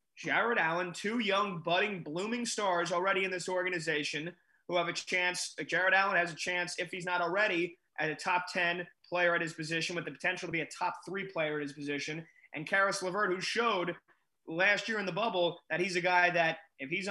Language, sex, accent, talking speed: English, male, American, 215 wpm